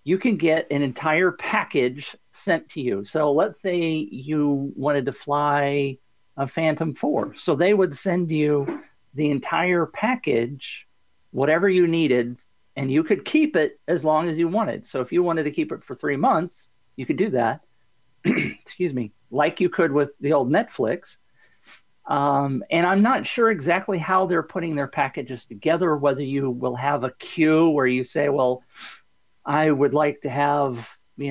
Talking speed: 175 wpm